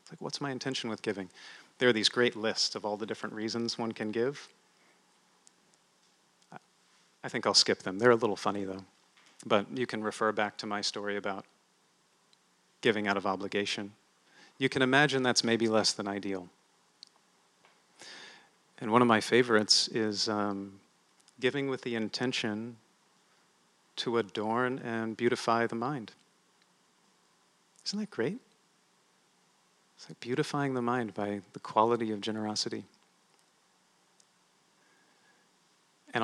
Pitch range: 105-125 Hz